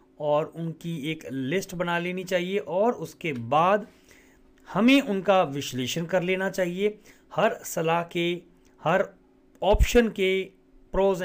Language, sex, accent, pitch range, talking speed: Hindi, male, native, 150-195 Hz, 125 wpm